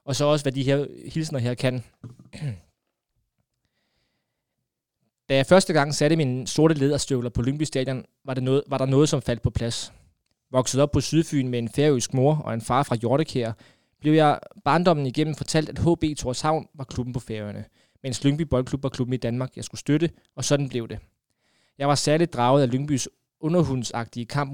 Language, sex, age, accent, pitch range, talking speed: Danish, male, 20-39, native, 120-145 Hz, 180 wpm